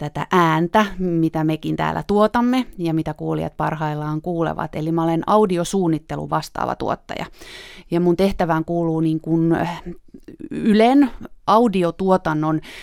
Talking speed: 115 wpm